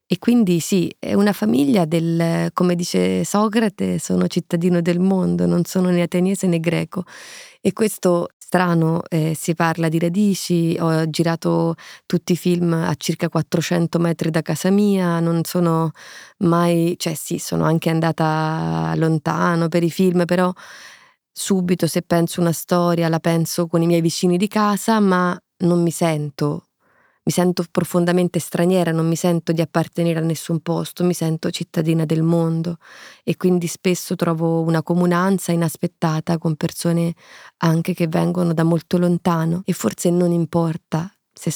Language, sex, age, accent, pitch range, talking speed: Italian, female, 20-39, native, 165-180 Hz, 155 wpm